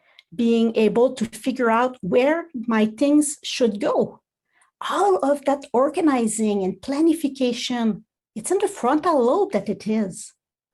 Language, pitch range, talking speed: English, 210-290 Hz, 135 wpm